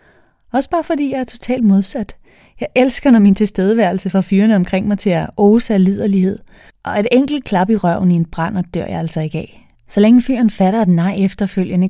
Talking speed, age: 210 wpm, 30-49